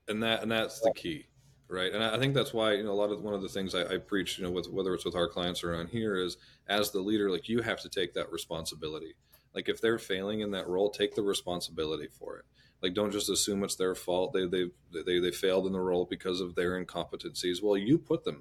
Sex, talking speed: male, 260 wpm